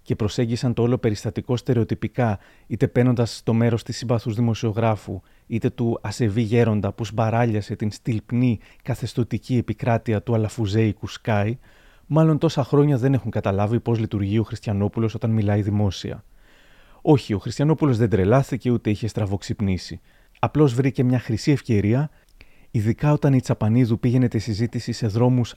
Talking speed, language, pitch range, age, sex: 145 wpm, Greek, 110-130 Hz, 30-49, male